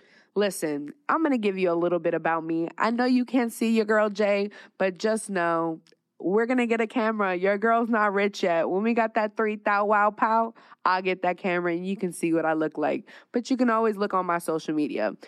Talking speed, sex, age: 240 wpm, female, 20-39